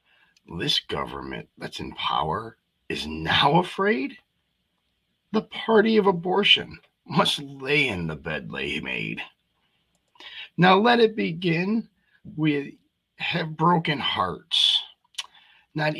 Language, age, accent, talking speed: English, 50-69, American, 105 wpm